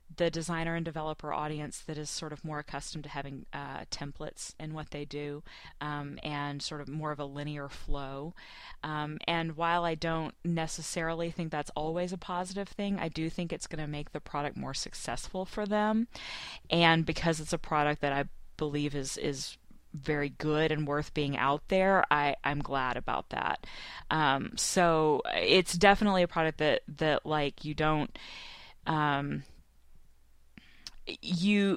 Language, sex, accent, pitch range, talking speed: English, female, American, 150-175 Hz, 165 wpm